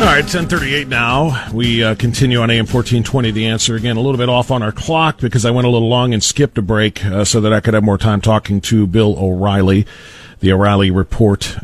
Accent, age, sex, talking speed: American, 40-59, male, 230 wpm